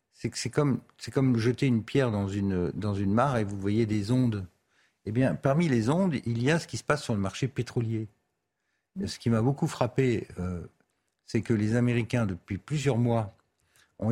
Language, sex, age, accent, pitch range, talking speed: French, male, 50-69, French, 110-140 Hz, 210 wpm